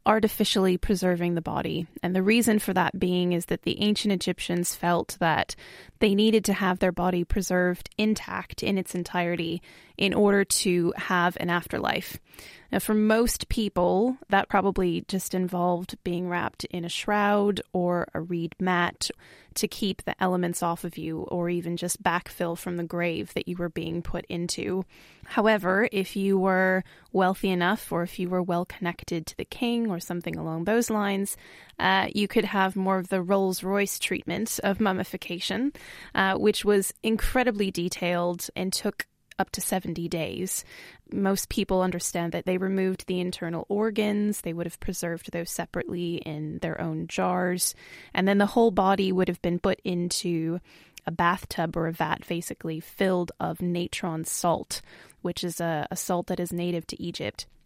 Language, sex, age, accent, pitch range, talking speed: English, female, 20-39, American, 175-200 Hz, 170 wpm